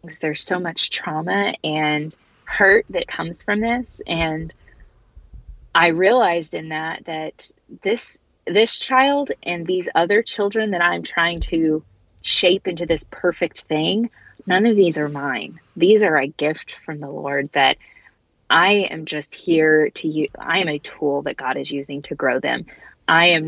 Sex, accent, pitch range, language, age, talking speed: female, American, 150-190 Hz, English, 20-39, 165 wpm